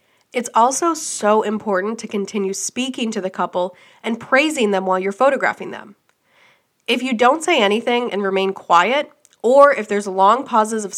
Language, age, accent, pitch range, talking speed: English, 20-39, American, 195-255 Hz, 170 wpm